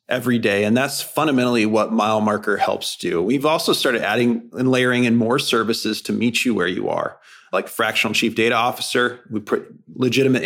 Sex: male